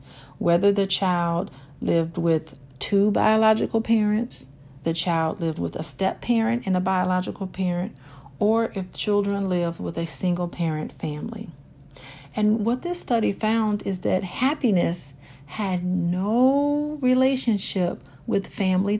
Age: 50-69